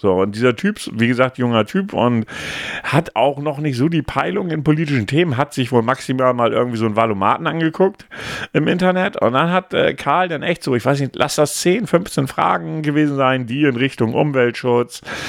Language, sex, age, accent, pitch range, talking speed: German, male, 40-59, German, 115-160 Hz, 210 wpm